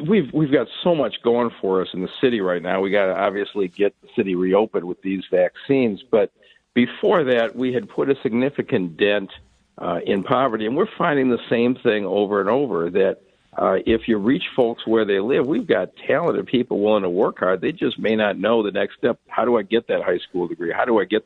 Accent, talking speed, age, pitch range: American, 230 wpm, 50-69, 105-130 Hz